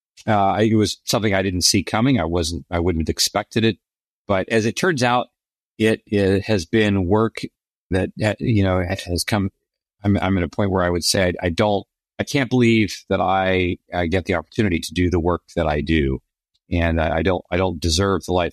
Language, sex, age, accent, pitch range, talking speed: English, male, 40-59, American, 85-110 Hz, 215 wpm